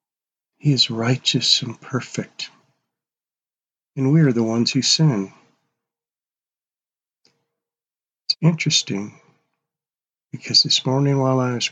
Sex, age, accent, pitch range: male, 50-69, American, 125-155 Hz